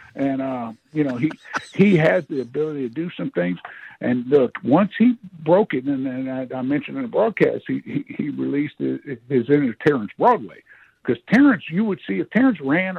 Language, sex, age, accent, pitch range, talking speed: English, male, 60-79, American, 130-170 Hz, 205 wpm